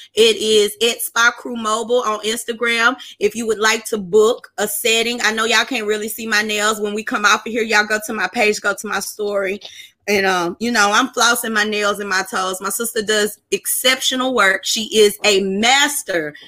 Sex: female